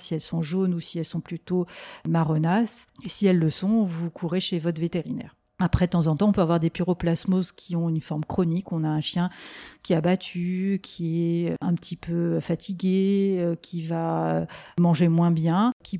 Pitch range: 170-195 Hz